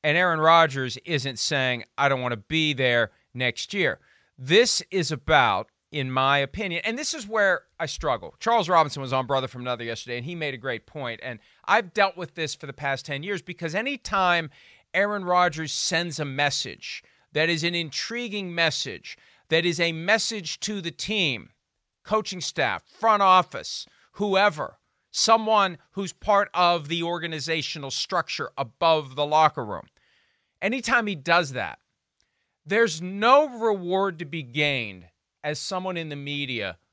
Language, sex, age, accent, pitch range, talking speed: English, male, 40-59, American, 135-195 Hz, 160 wpm